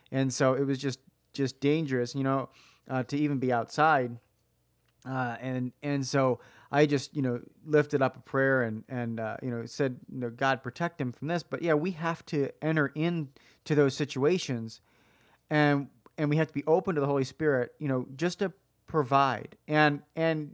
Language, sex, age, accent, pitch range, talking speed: English, male, 30-49, American, 135-175 Hz, 195 wpm